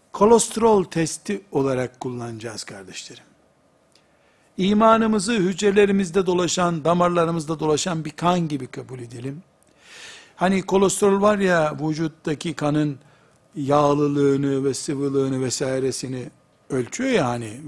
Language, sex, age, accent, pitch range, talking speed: Turkish, male, 60-79, native, 145-205 Hz, 95 wpm